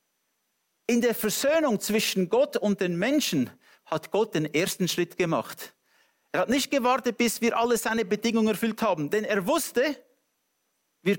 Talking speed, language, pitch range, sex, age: 155 wpm, English, 200-255 Hz, male, 50-69